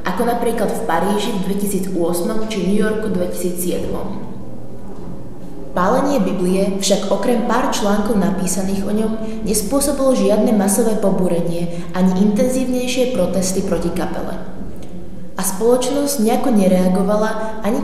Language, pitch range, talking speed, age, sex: Slovak, 185-225 Hz, 110 wpm, 20-39, female